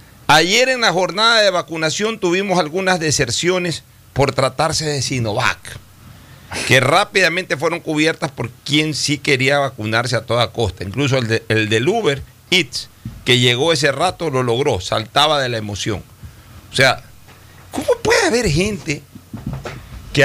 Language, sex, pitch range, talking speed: Spanish, male, 120-180 Hz, 145 wpm